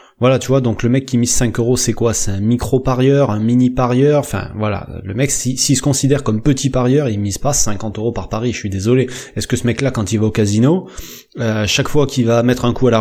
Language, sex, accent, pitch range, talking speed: French, male, French, 115-135 Hz, 275 wpm